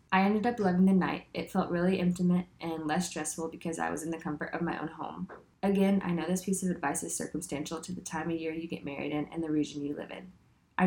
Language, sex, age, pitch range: English, female, 10-29, 165-185 Hz